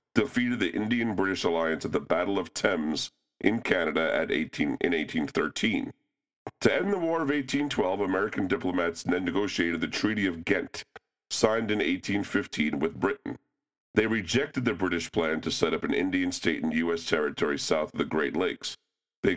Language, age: English, 40-59